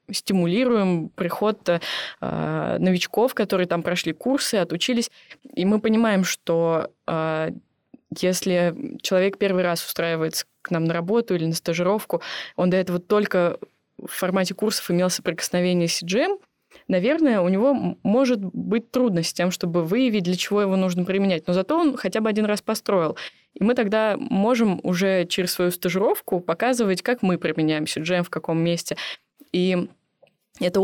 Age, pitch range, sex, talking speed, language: 20-39, 170-210 Hz, female, 150 wpm, Russian